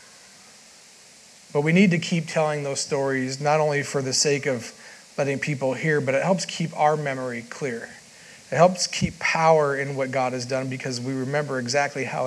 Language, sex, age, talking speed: English, male, 40-59, 185 wpm